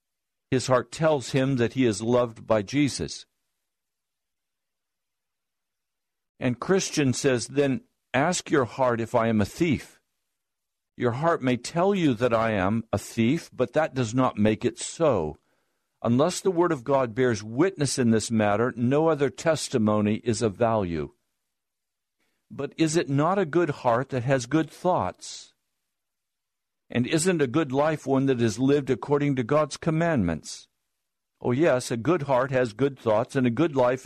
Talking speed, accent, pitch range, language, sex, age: 160 wpm, American, 115-145 Hz, English, male, 60-79